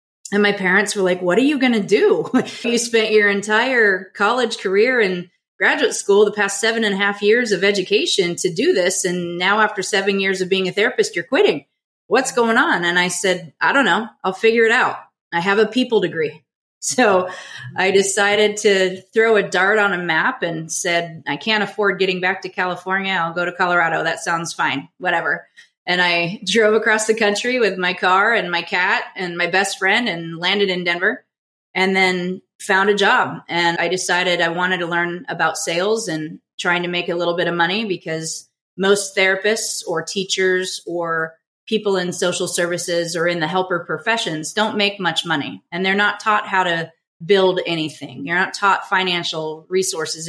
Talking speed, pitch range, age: 195 wpm, 175-205 Hz, 30-49